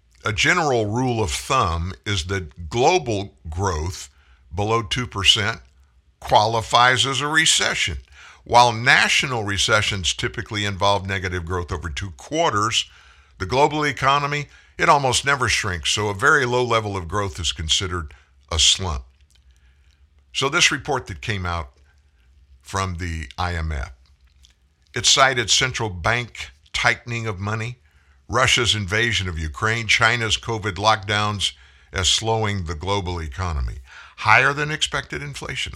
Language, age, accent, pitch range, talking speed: English, 50-69, American, 75-110 Hz, 125 wpm